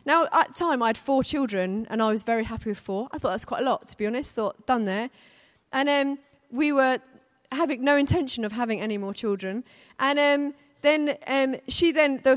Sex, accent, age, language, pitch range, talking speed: female, British, 30-49, English, 220-300 Hz, 225 wpm